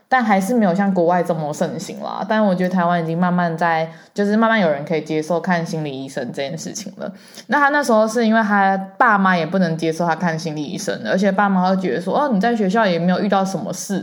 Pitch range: 175-215 Hz